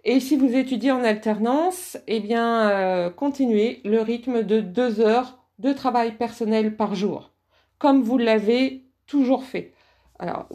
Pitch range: 225-280 Hz